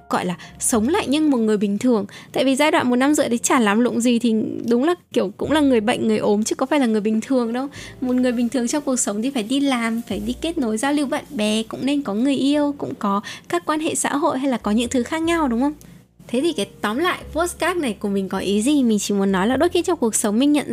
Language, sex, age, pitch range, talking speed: Vietnamese, female, 10-29, 210-275 Hz, 300 wpm